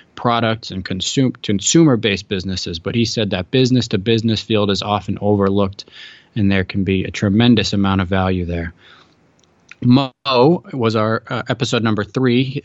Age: 20-39